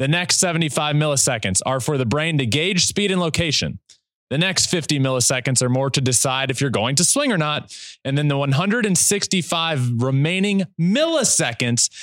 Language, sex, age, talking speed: English, male, 20-39, 170 wpm